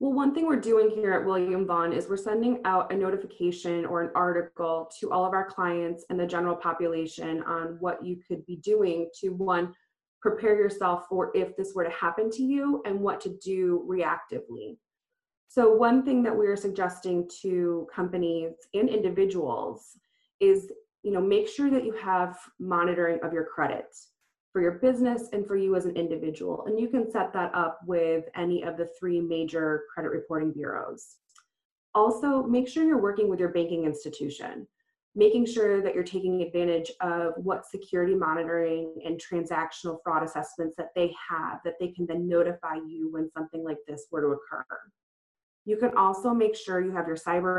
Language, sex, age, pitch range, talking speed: English, female, 20-39, 170-210 Hz, 180 wpm